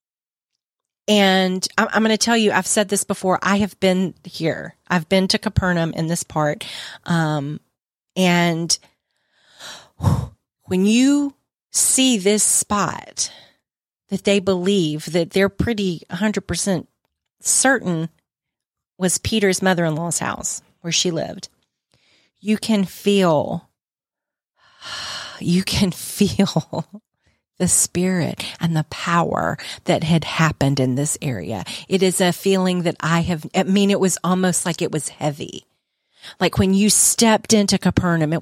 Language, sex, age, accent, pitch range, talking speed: English, female, 40-59, American, 160-200 Hz, 130 wpm